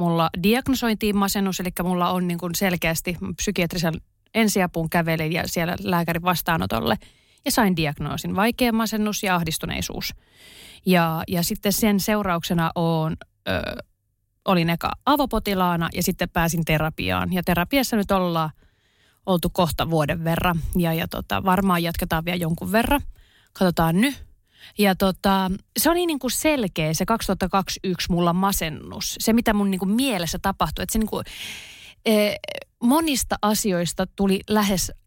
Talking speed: 135 wpm